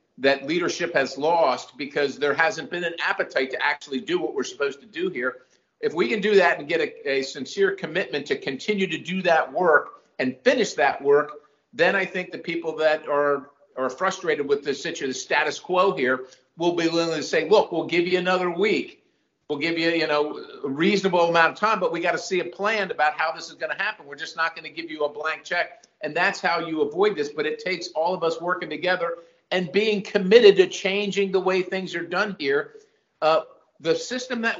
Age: 50-69